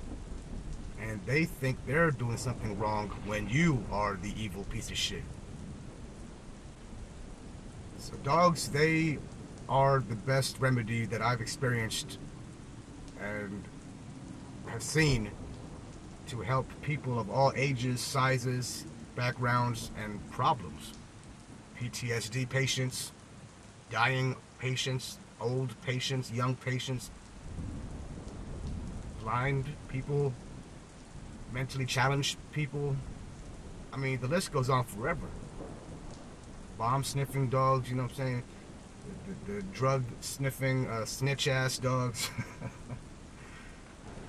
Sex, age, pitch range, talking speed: male, 30-49, 110-135 Hz, 100 wpm